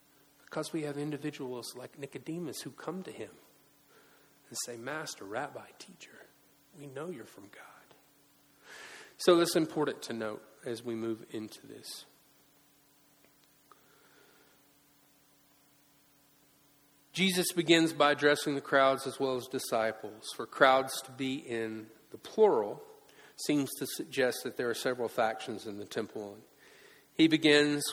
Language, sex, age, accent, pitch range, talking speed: English, male, 40-59, American, 130-170 Hz, 130 wpm